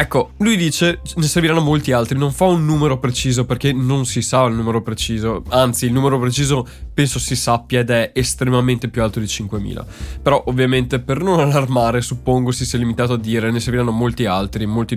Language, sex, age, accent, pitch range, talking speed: Italian, male, 20-39, native, 115-145 Hz, 195 wpm